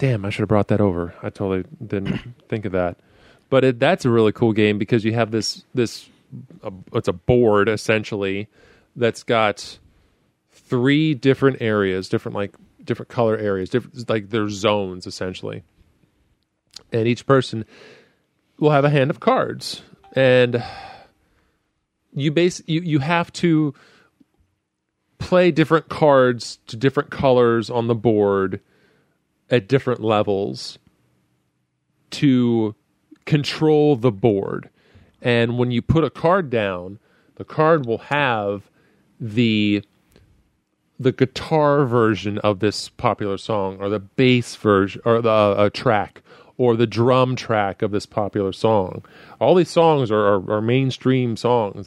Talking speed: 140 wpm